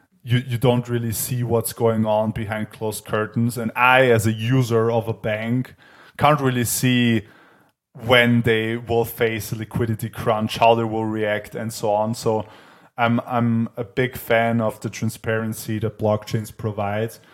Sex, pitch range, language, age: male, 110-120 Hz, English, 20-39